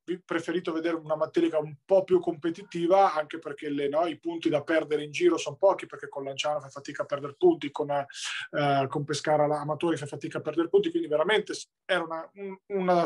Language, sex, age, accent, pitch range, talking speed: Italian, male, 20-39, native, 145-170 Hz, 200 wpm